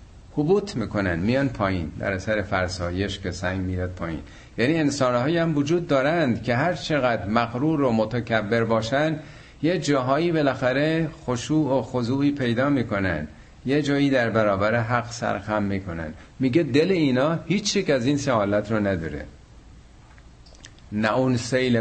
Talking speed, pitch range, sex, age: 140 wpm, 100-145 Hz, male, 50-69